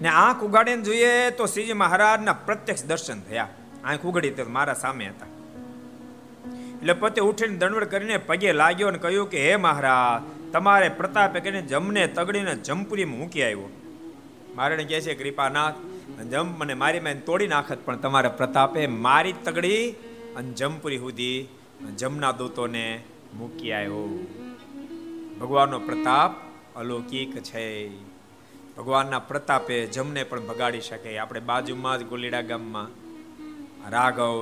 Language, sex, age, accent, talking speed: Gujarati, male, 50-69, native, 75 wpm